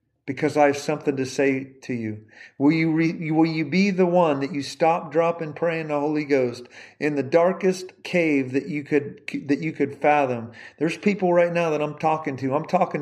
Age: 40-59